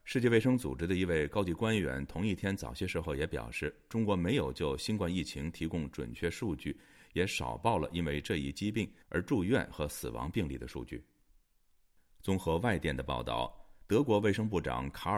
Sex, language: male, Chinese